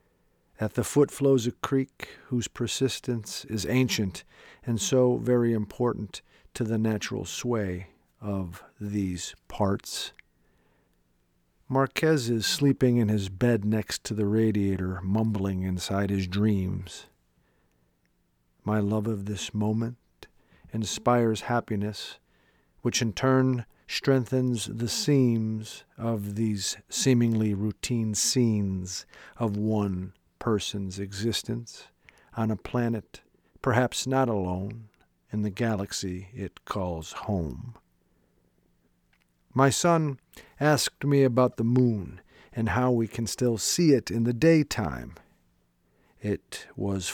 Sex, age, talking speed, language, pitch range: male, 50-69, 110 wpm, English, 95-120 Hz